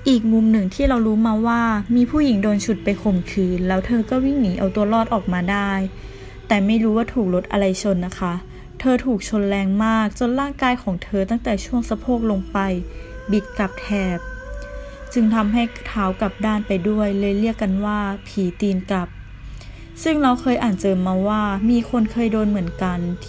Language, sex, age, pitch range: Thai, female, 20-39, 185-220 Hz